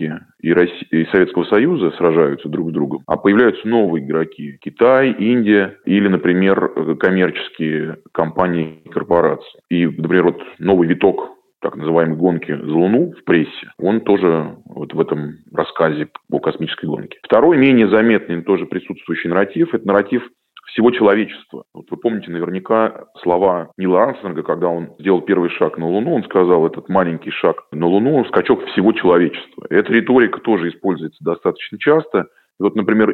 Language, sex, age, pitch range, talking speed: Russian, male, 20-39, 85-105 Hz, 150 wpm